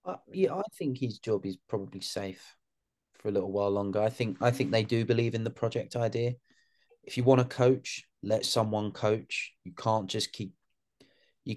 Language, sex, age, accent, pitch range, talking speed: English, male, 30-49, British, 95-120 Hz, 195 wpm